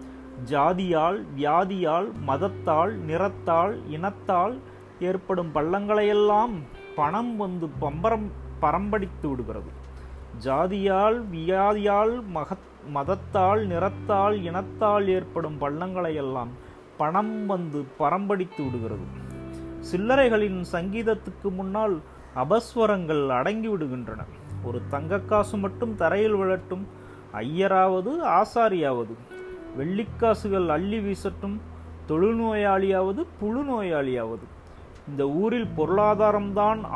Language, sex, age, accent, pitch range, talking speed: Tamil, male, 30-49, native, 145-205 Hz, 70 wpm